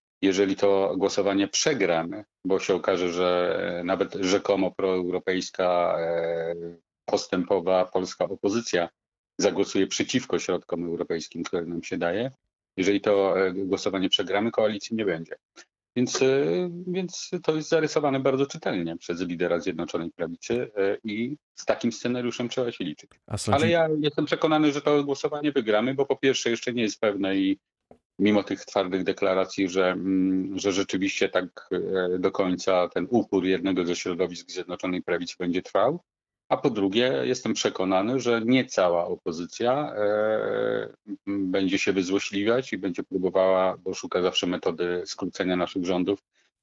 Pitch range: 90-115 Hz